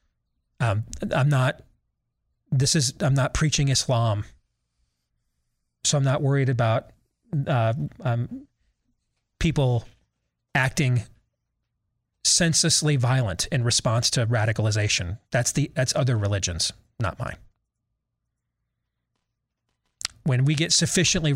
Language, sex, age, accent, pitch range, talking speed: English, male, 30-49, American, 120-160 Hz, 100 wpm